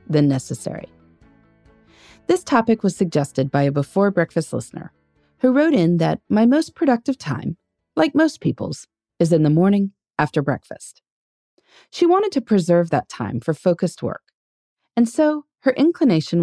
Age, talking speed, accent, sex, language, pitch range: 30-49, 150 wpm, American, female, English, 155-255 Hz